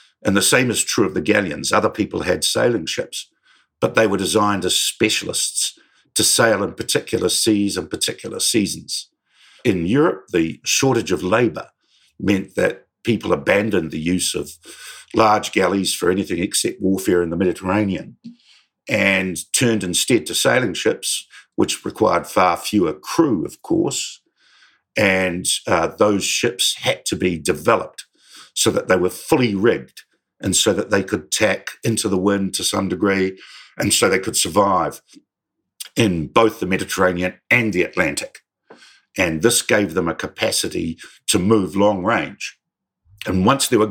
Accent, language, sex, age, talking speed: Australian, English, male, 50-69, 155 wpm